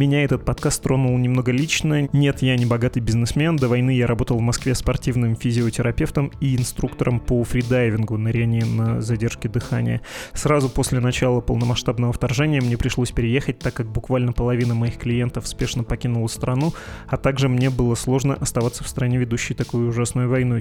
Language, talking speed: Russian, 165 wpm